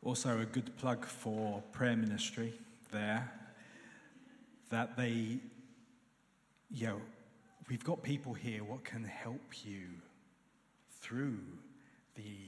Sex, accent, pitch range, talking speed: male, British, 110-130 Hz, 105 wpm